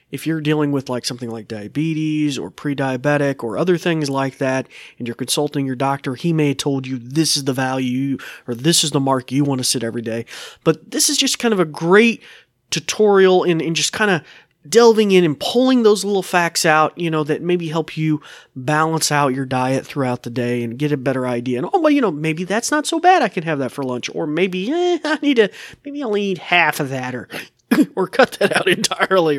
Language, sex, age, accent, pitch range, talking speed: English, male, 30-49, American, 135-180 Hz, 235 wpm